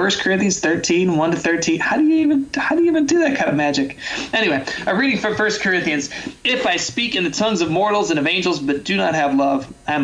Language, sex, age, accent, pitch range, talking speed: English, male, 20-39, American, 145-190 Hz, 255 wpm